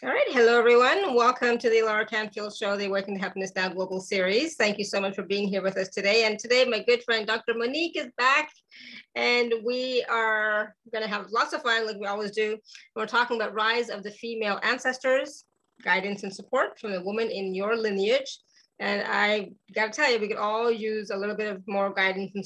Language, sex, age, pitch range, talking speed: English, female, 30-49, 205-235 Hz, 220 wpm